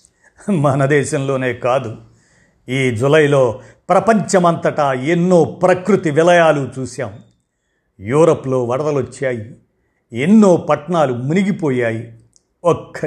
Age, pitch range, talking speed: 50-69, 125-165 Hz, 80 wpm